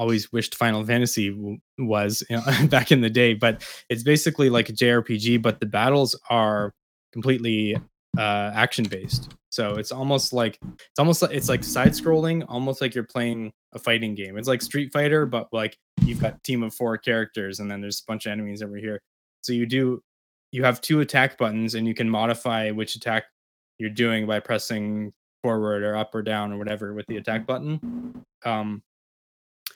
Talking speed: 195 wpm